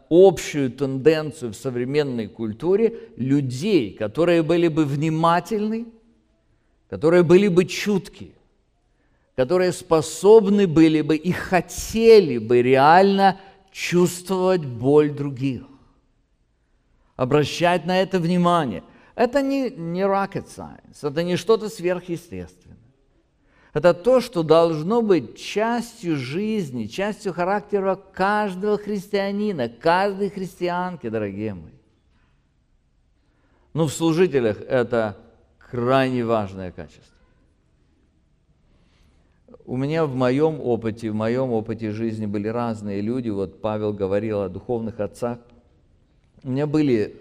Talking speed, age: 105 wpm, 50-69